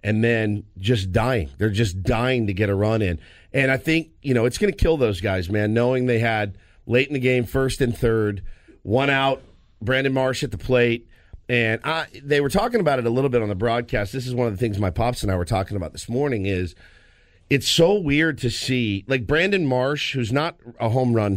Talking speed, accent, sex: 235 wpm, American, male